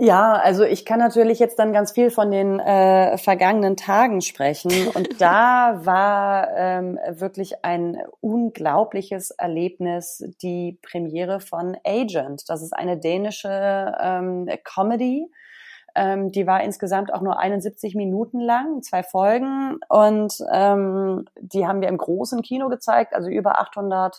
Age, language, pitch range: 30-49, German, 180-230 Hz